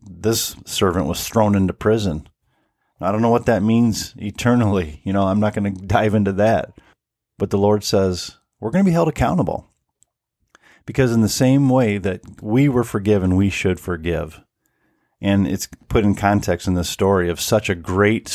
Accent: American